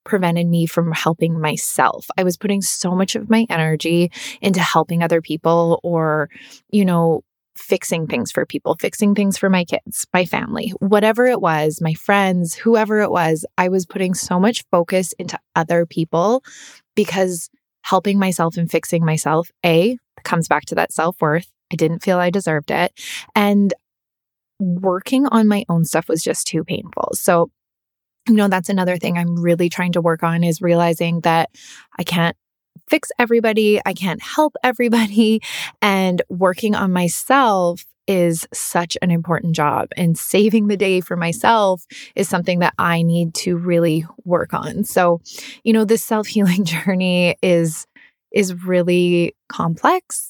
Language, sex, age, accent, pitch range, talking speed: English, female, 20-39, American, 170-205 Hz, 160 wpm